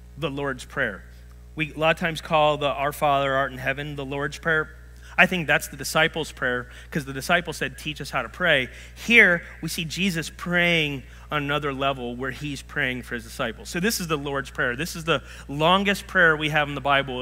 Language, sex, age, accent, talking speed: English, male, 30-49, American, 220 wpm